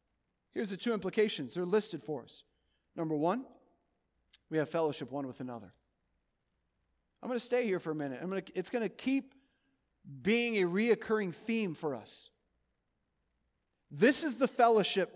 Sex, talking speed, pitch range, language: male, 160 wpm, 185-240 Hz, English